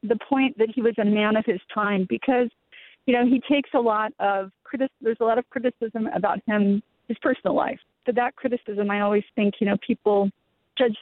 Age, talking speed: 40-59, 210 wpm